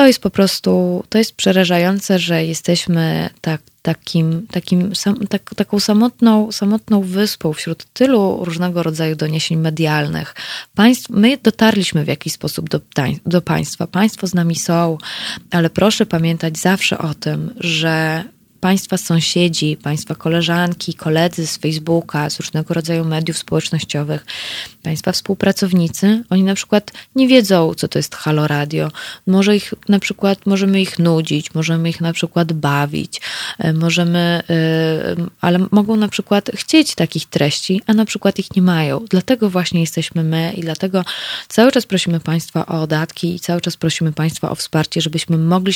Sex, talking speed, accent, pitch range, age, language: female, 140 wpm, native, 155-190 Hz, 20-39, Polish